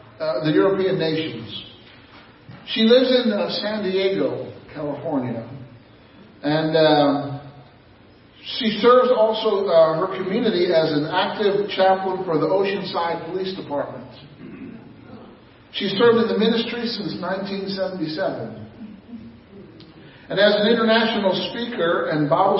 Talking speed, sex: 110 wpm, male